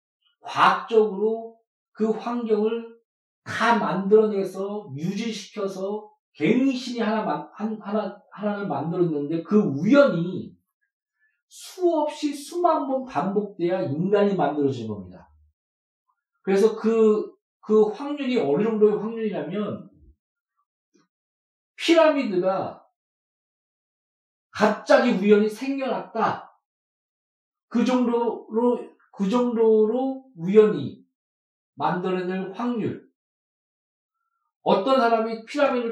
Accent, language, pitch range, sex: native, Korean, 180-245 Hz, male